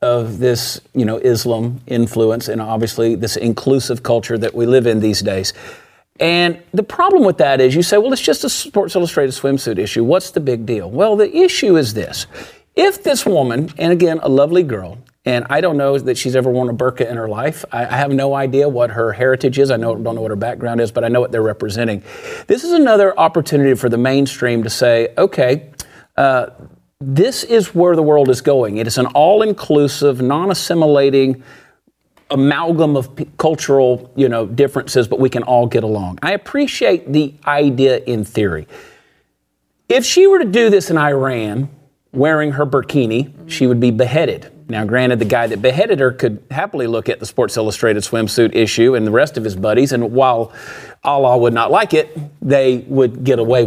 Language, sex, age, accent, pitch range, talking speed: English, male, 50-69, American, 115-155 Hz, 195 wpm